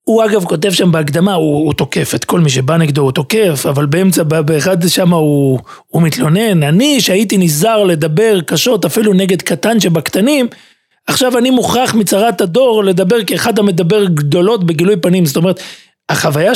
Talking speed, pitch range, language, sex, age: 165 wpm, 155-200 Hz, Hebrew, male, 40-59